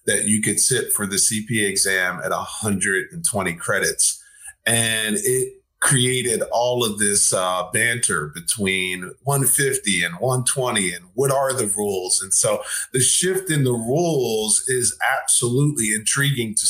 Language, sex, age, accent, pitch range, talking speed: English, male, 40-59, American, 105-145 Hz, 140 wpm